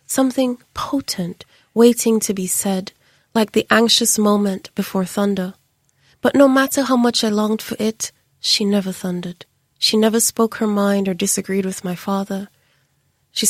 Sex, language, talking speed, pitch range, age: female, English, 155 wpm, 190-225 Hz, 30-49